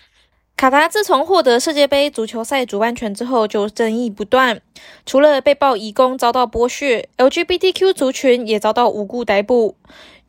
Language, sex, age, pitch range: Chinese, female, 20-39, 220-290 Hz